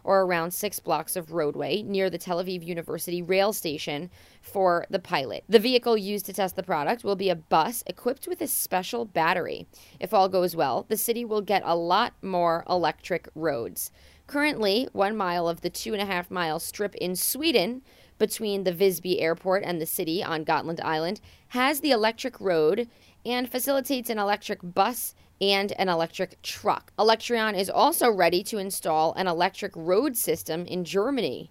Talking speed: 170 wpm